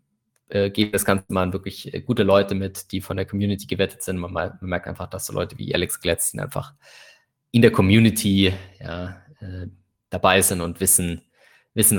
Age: 20-39